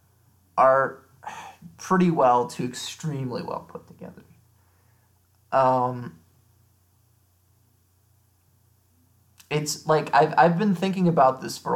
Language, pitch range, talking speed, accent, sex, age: English, 100-150 Hz, 90 wpm, American, male, 20-39